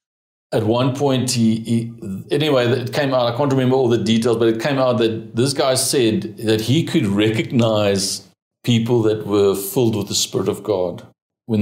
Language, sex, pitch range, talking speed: English, male, 105-130 Hz, 180 wpm